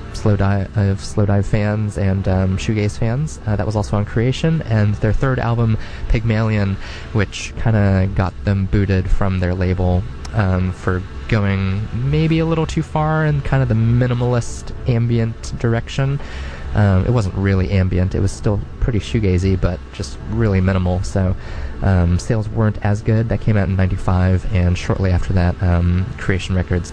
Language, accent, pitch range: English, American, 95-115 Hz